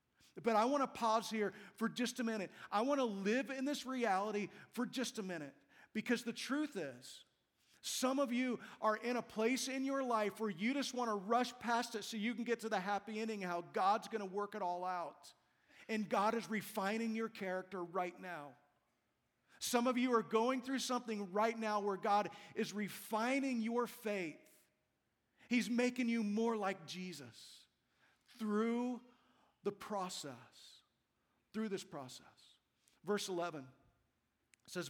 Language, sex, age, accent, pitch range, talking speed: English, male, 40-59, American, 175-225 Hz, 165 wpm